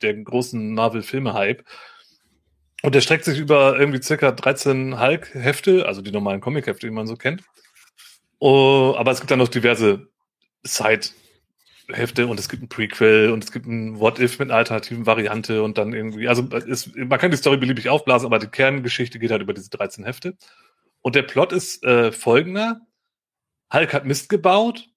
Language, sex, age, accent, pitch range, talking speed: German, male, 30-49, German, 115-145 Hz, 170 wpm